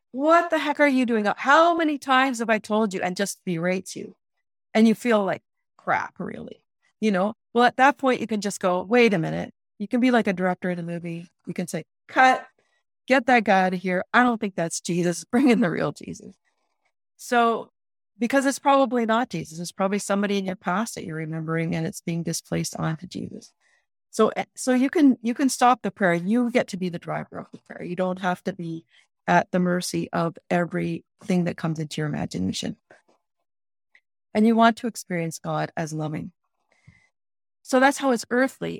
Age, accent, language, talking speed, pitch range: 40-59, American, English, 205 wpm, 170-235 Hz